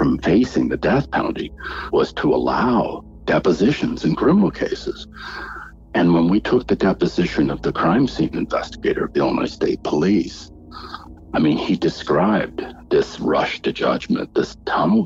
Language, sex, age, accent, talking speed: English, male, 60-79, American, 150 wpm